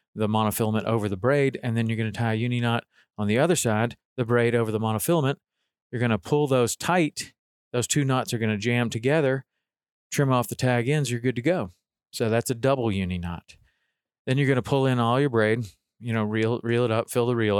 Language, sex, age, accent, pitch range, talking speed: English, male, 40-59, American, 110-130 Hz, 230 wpm